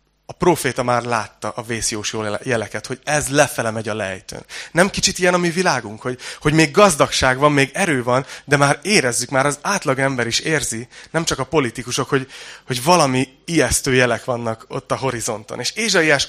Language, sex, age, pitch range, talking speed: Hungarian, male, 30-49, 120-150 Hz, 190 wpm